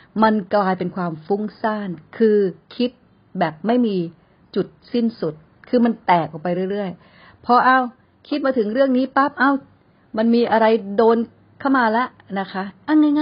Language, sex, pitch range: Thai, female, 180-255 Hz